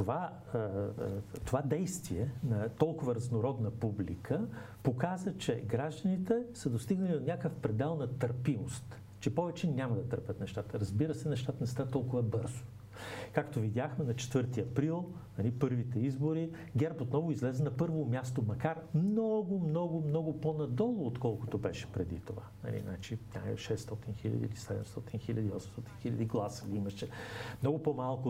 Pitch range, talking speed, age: 110-145 Hz, 140 wpm, 50-69